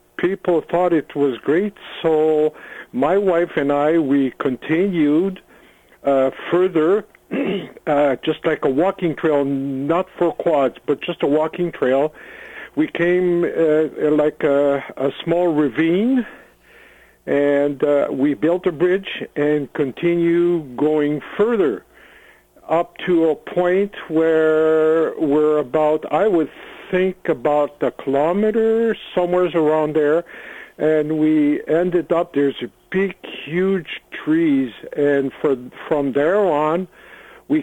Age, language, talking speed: 60-79, English, 120 wpm